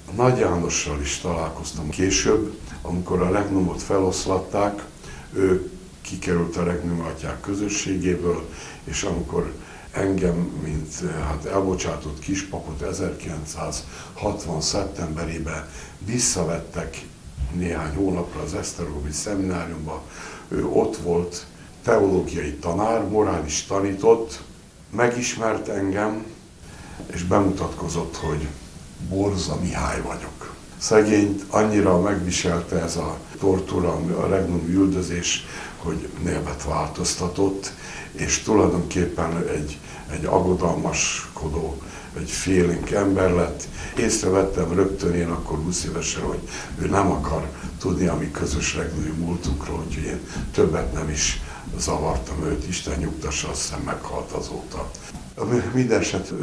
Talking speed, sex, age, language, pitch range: 100 wpm, male, 60-79, Hungarian, 80-95 Hz